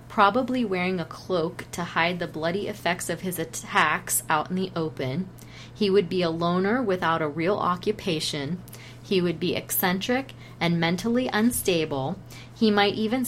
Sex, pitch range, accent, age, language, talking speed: female, 160-200 Hz, American, 30-49, English, 160 wpm